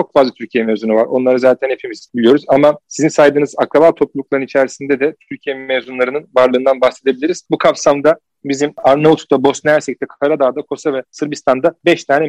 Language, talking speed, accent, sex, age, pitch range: Turkish, 155 wpm, native, male, 40-59, 135-155 Hz